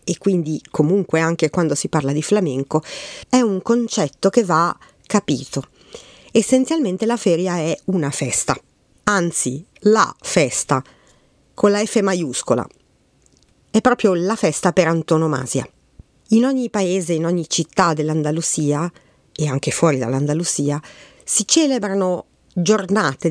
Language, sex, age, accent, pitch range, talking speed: Italian, female, 40-59, native, 155-205 Hz, 125 wpm